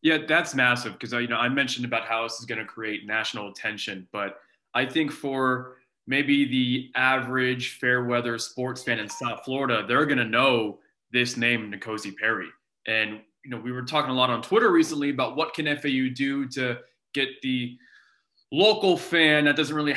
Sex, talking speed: male, 190 wpm